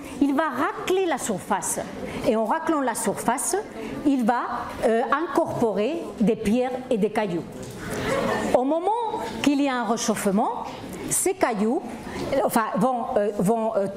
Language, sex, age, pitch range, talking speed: French, female, 40-59, 220-295 Hz, 140 wpm